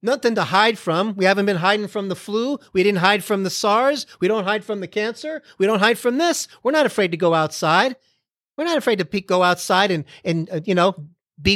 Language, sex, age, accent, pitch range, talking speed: English, male, 40-59, American, 175-260 Hz, 240 wpm